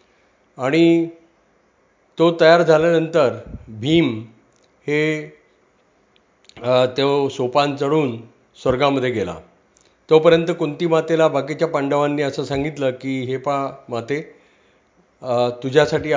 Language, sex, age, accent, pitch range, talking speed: Marathi, male, 40-59, native, 130-155 Hz, 85 wpm